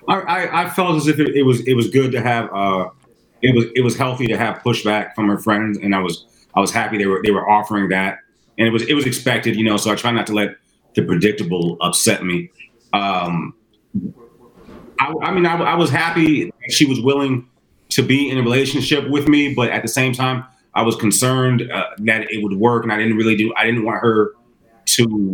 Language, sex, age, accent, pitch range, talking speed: English, male, 30-49, American, 105-130 Hz, 230 wpm